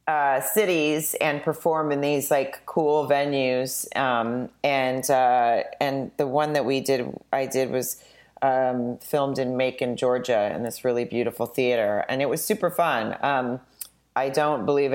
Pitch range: 125-150 Hz